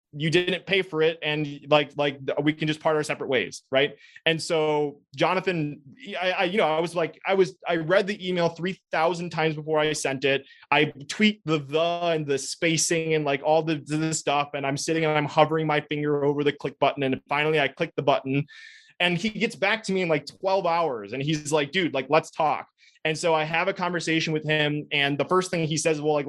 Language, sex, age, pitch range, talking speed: English, male, 20-39, 145-170 Hz, 235 wpm